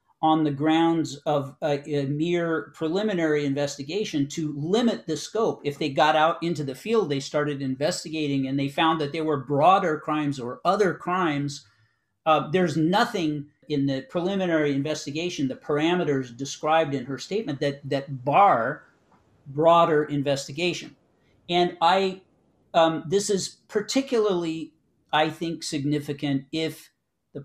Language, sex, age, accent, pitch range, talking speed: English, male, 50-69, American, 145-170 Hz, 140 wpm